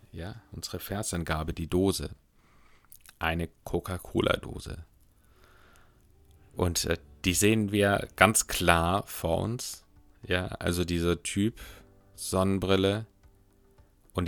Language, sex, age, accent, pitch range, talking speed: German, male, 30-49, German, 85-100 Hz, 90 wpm